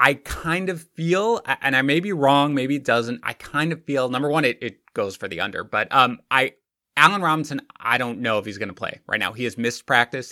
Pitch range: 115-165 Hz